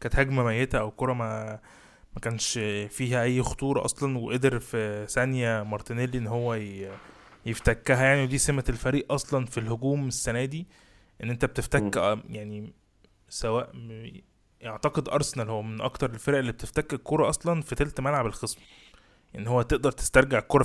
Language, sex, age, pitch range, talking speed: Arabic, male, 20-39, 110-135 Hz, 150 wpm